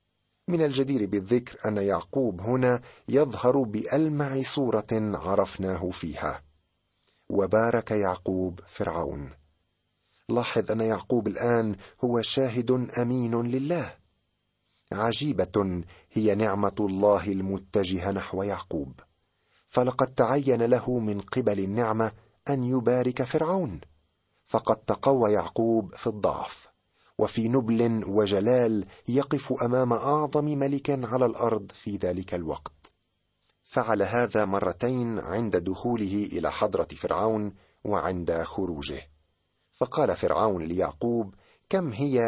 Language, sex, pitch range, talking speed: Arabic, male, 95-120 Hz, 100 wpm